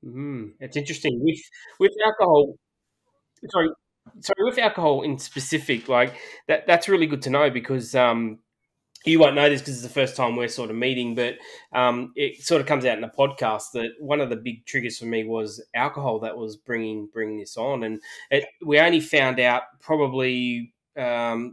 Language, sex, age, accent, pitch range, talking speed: English, male, 20-39, Australian, 115-140 Hz, 190 wpm